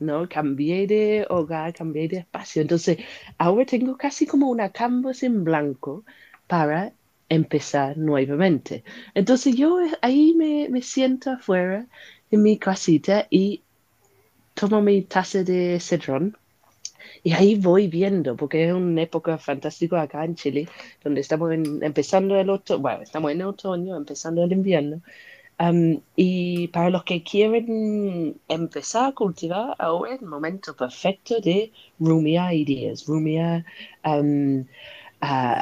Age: 30-49